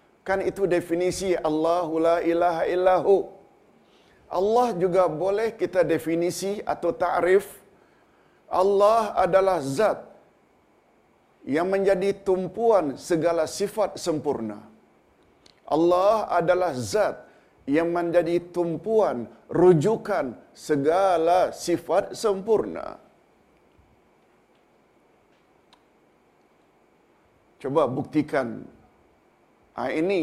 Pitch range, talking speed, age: 155-190 Hz, 75 wpm, 50-69